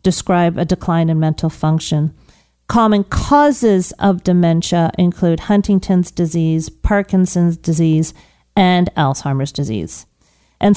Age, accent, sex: 40-59, American, female